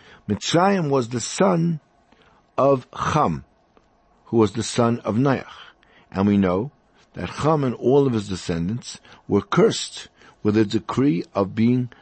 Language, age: English, 60-79